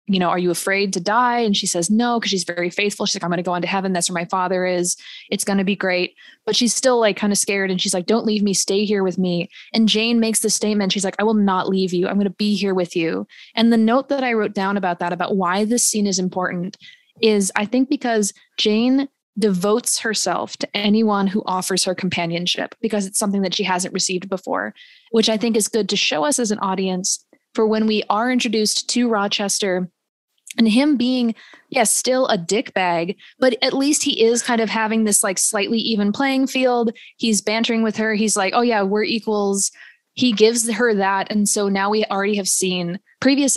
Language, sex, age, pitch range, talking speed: English, female, 20-39, 190-225 Hz, 230 wpm